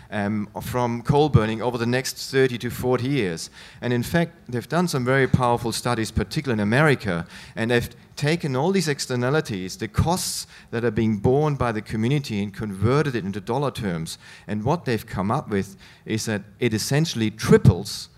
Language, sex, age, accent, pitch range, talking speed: English, male, 40-59, German, 110-145 Hz, 180 wpm